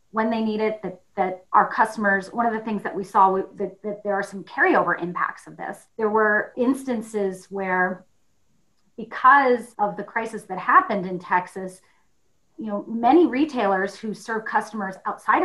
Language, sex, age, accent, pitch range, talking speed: English, female, 30-49, American, 195-235 Hz, 170 wpm